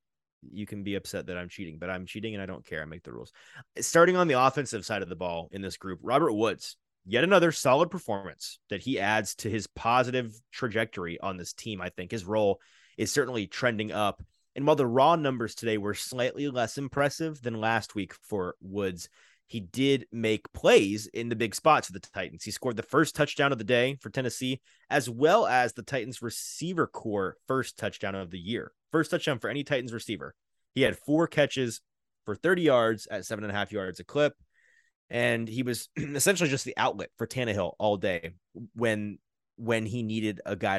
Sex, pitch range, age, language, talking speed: male, 100-135 Hz, 30-49, English, 205 wpm